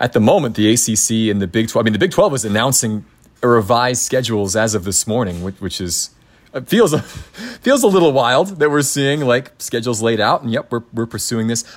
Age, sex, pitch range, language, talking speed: 30-49, male, 100-125 Hz, English, 220 wpm